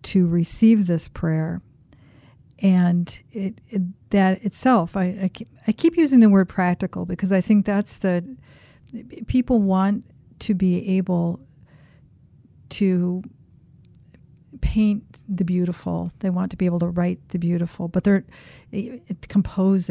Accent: American